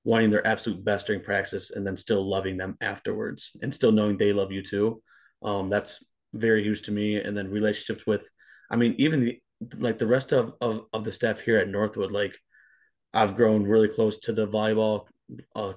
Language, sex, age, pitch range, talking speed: English, male, 20-39, 100-110 Hz, 200 wpm